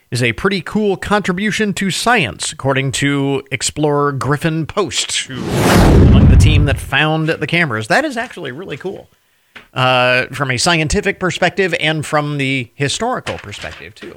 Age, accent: 40-59, American